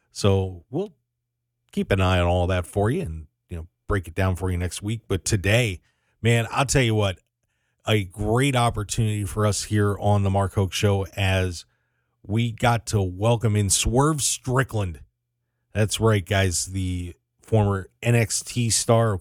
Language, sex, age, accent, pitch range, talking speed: English, male, 40-59, American, 95-120 Hz, 160 wpm